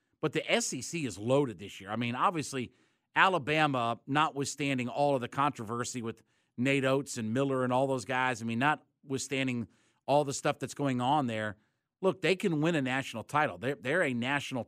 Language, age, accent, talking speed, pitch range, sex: English, 50-69, American, 190 wpm, 120-145 Hz, male